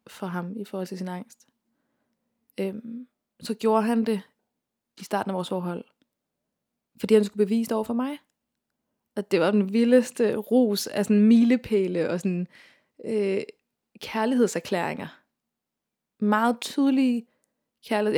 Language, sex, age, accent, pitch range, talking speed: Danish, female, 20-39, native, 185-225 Hz, 135 wpm